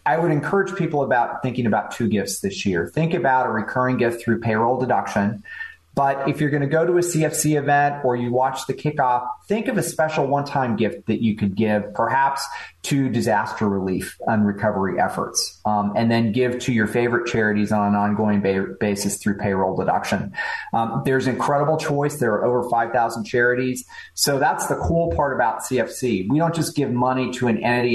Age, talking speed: 30-49, 195 wpm